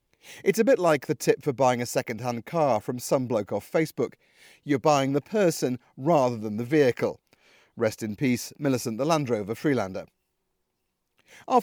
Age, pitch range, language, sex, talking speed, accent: 40-59, 125-170 Hz, English, male, 170 wpm, British